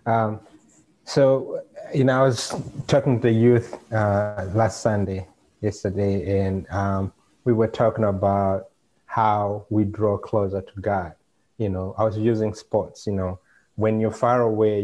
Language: English